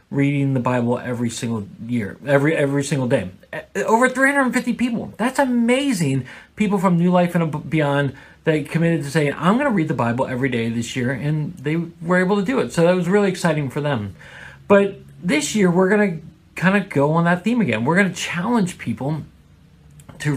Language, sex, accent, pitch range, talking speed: English, male, American, 135-175 Hz, 220 wpm